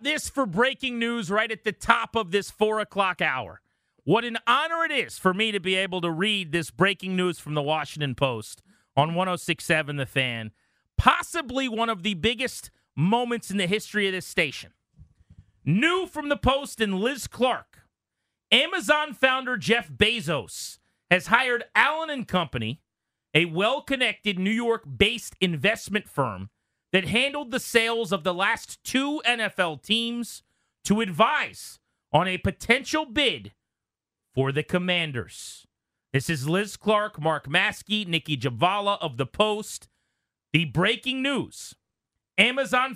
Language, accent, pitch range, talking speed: English, American, 160-235 Hz, 145 wpm